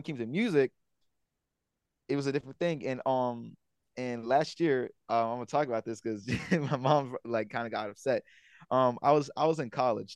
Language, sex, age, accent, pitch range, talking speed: English, male, 20-39, American, 115-135 Hz, 200 wpm